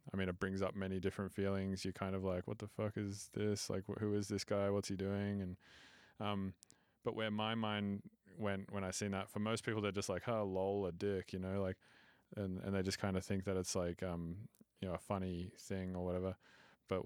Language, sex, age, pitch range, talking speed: English, male, 20-39, 95-105 Hz, 245 wpm